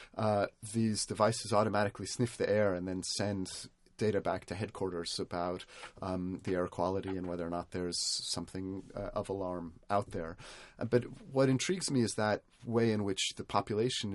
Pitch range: 95-110 Hz